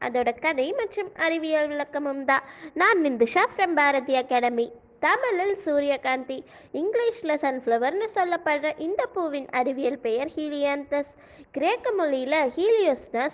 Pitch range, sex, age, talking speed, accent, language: 270-365 Hz, female, 20-39, 110 wpm, native, Tamil